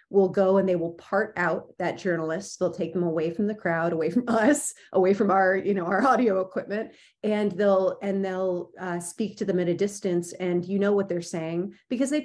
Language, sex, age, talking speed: English, female, 30-49, 225 wpm